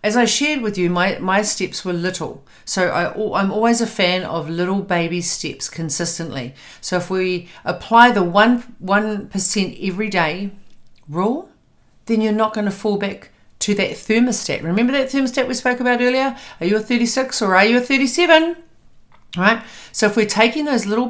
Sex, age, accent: female, 50-69, Australian